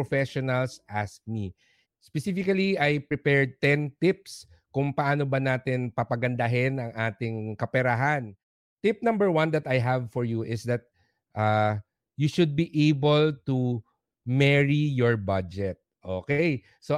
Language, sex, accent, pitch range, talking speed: English, male, Filipino, 115-150 Hz, 130 wpm